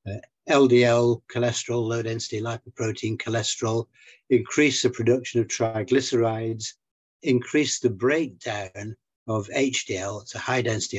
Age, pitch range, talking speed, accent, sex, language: 60-79, 110-125 Hz, 115 wpm, British, male, English